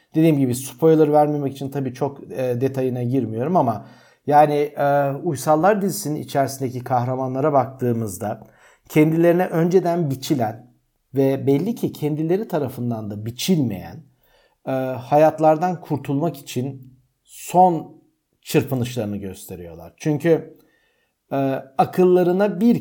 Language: Turkish